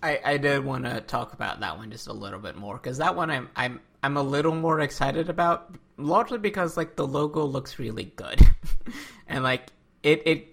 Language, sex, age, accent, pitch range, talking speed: English, male, 20-39, American, 110-155 Hz, 210 wpm